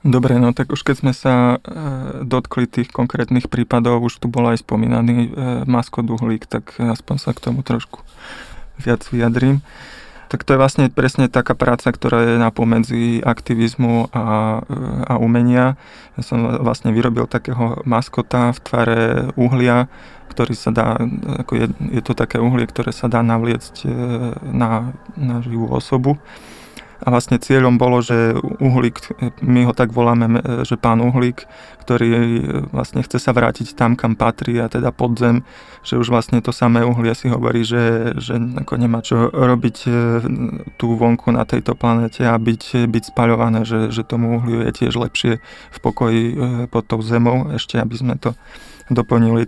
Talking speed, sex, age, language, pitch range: 160 wpm, male, 20-39, Slovak, 115-125 Hz